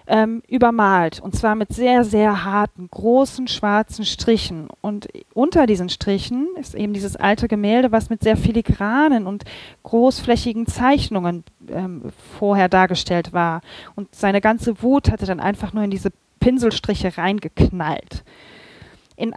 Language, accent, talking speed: German, German, 135 wpm